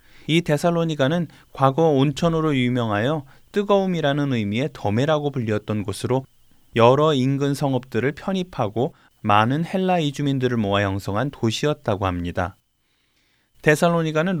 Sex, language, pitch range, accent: male, Korean, 115-155 Hz, native